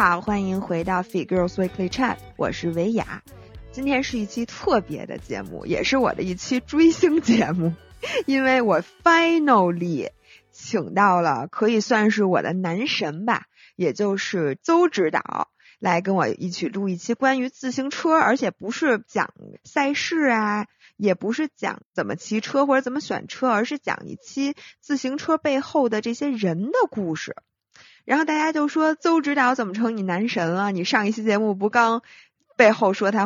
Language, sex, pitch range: Chinese, female, 195-260 Hz